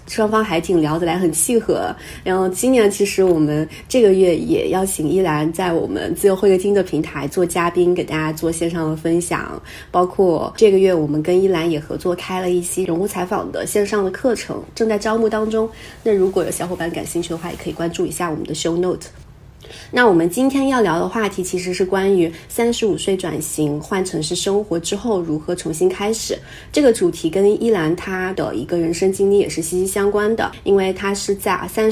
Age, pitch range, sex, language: 20-39, 170-210 Hz, female, Chinese